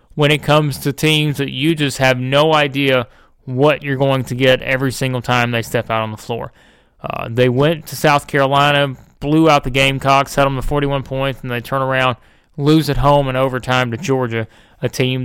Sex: male